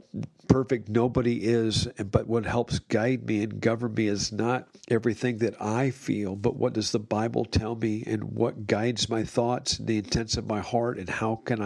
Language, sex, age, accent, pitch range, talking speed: English, male, 50-69, American, 110-125 Hz, 195 wpm